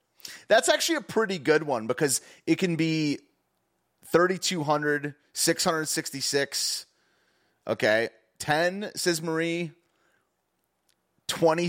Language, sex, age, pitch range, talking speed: English, male, 30-49, 130-170 Hz, 115 wpm